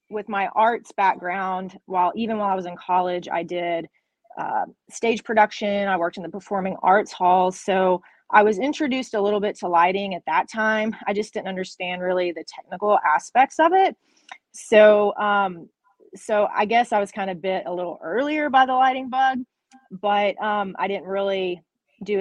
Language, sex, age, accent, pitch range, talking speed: English, female, 30-49, American, 180-210 Hz, 185 wpm